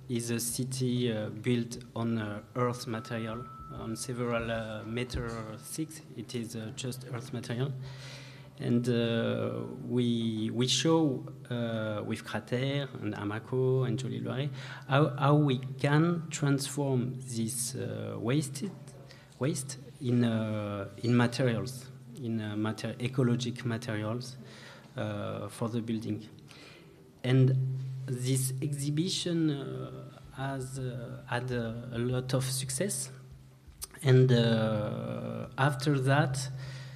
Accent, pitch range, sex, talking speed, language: French, 115-135 Hz, male, 115 wpm, French